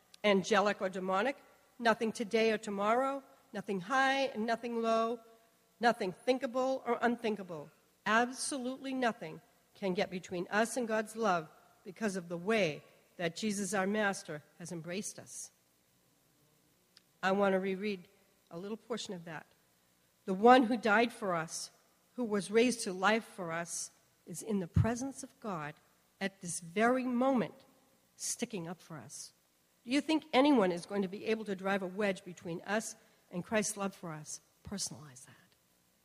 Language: English